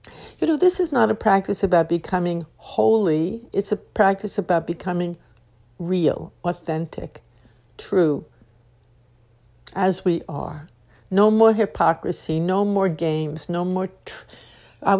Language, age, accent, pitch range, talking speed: English, 60-79, American, 155-205 Hz, 120 wpm